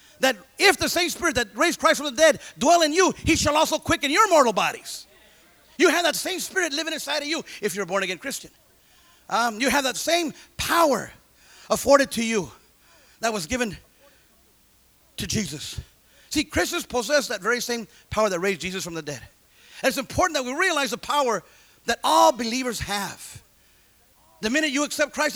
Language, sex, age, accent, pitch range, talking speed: English, male, 40-59, American, 235-315 Hz, 185 wpm